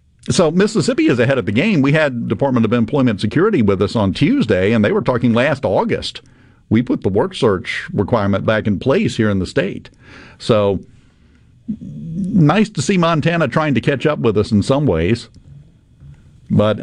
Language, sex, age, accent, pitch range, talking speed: English, male, 50-69, American, 105-145 Hz, 180 wpm